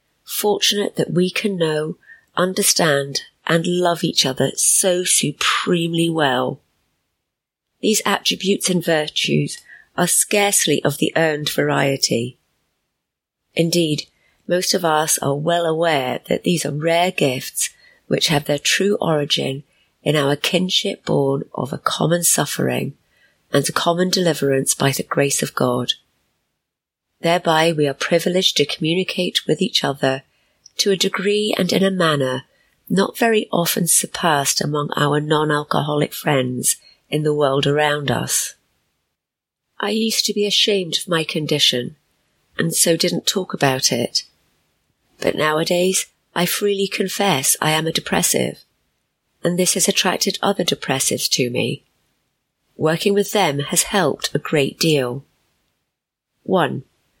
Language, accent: English, British